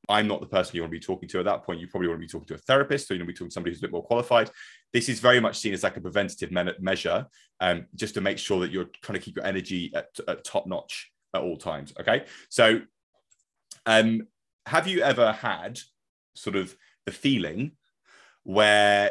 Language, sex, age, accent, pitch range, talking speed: English, male, 30-49, British, 90-110 Hz, 240 wpm